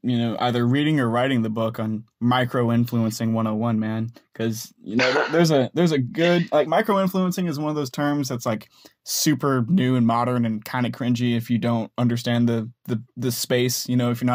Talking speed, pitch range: 220 wpm, 115-135 Hz